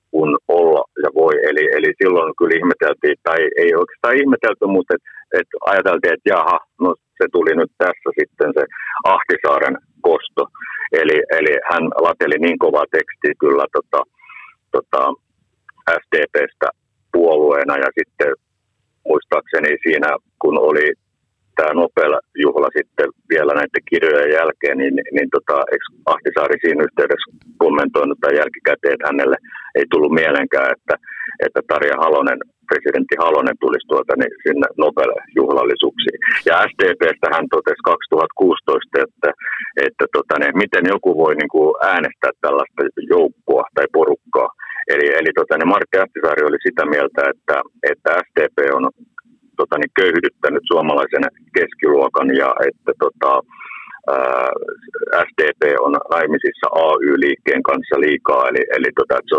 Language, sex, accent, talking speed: Finnish, male, native, 130 wpm